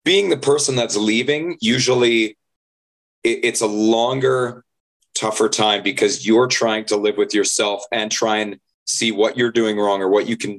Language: English